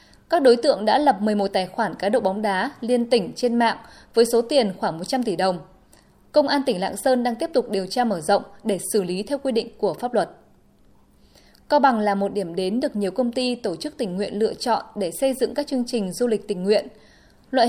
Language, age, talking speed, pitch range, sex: Vietnamese, 20-39, 240 wpm, 205-265 Hz, female